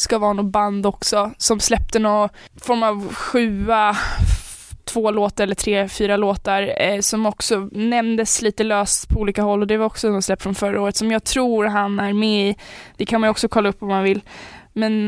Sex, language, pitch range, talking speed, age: female, Swedish, 205-230 Hz, 215 wpm, 20-39